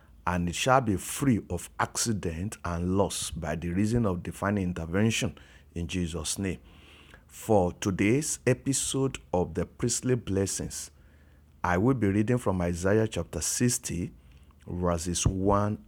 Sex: male